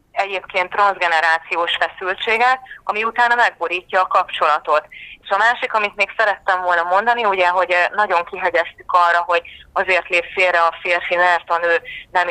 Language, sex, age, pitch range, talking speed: Hungarian, female, 30-49, 160-200 Hz, 150 wpm